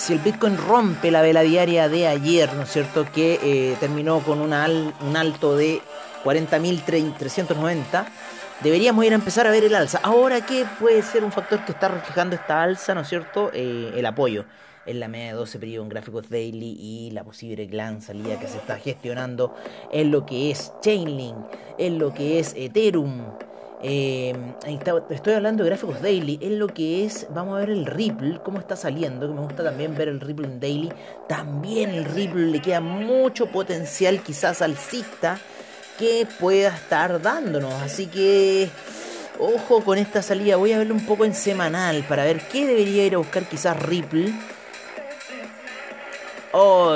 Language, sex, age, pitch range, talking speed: Spanish, male, 30-49, 150-200 Hz, 180 wpm